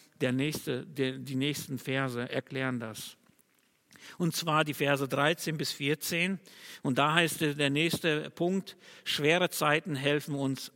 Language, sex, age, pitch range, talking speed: German, male, 50-69, 145-180 Hz, 125 wpm